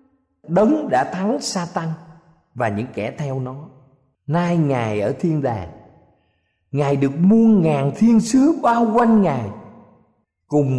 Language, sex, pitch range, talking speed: Vietnamese, male, 115-180 Hz, 135 wpm